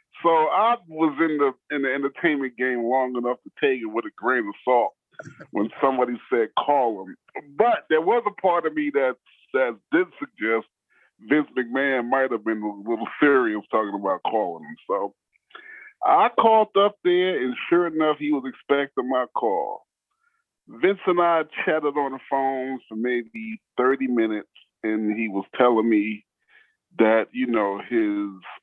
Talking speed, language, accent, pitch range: 170 wpm, English, American, 105-175 Hz